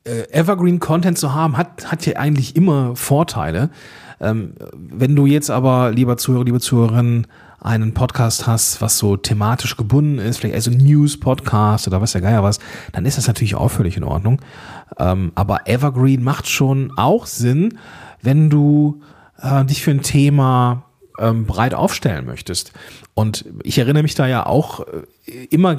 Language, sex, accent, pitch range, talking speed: German, male, German, 110-145 Hz, 160 wpm